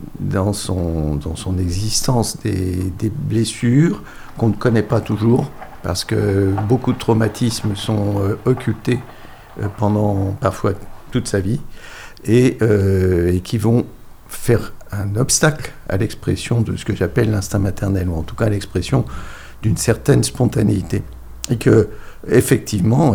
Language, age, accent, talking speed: French, 60-79, French, 140 wpm